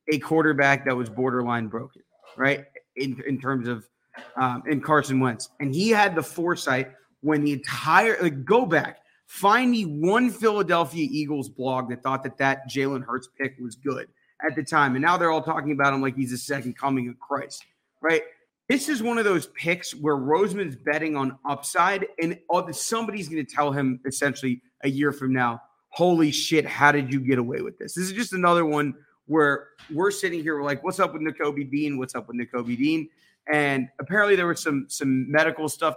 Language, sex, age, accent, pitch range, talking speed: English, male, 30-49, American, 135-180 Hz, 200 wpm